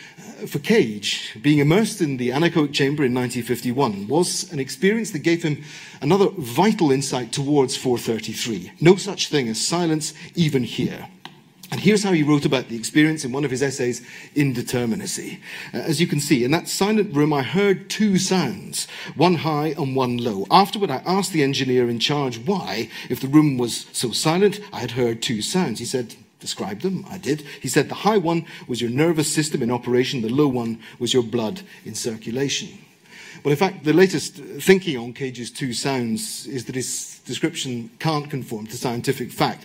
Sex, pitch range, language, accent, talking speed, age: male, 120-170 Hz, English, British, 185 wpm, 40-59